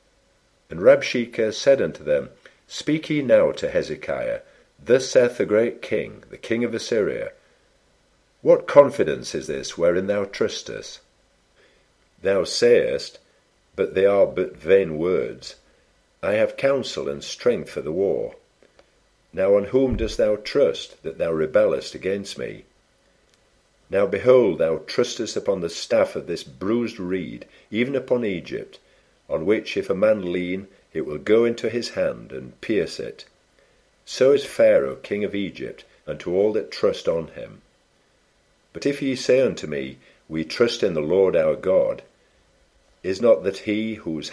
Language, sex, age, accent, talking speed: English, male, 50-69, British, 155 wpm